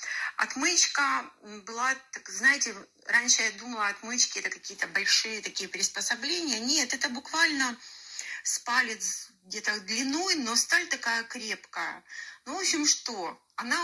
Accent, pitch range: native, 215-275 Hz